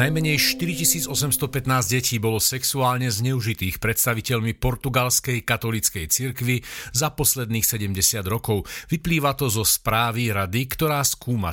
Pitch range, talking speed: 105-130 Hz, 110 wpm